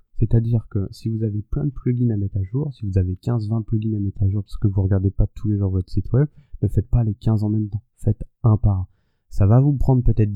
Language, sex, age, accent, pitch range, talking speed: French, male, 20-39, French, 100-120 Hz, 290 wpm